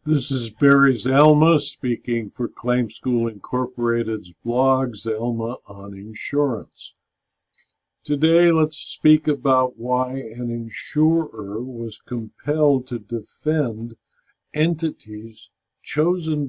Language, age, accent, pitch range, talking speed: English, 60-79, American, 125-160 Hz, 95 wpm